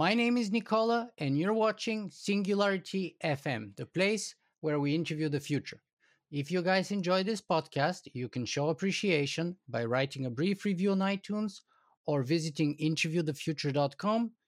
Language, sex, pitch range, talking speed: English, male, 140-190 Hz, 150 wpm